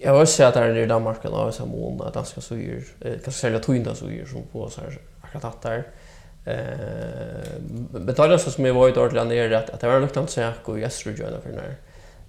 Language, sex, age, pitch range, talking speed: English, male, 20-39, 110-130 Hz, 195 wpm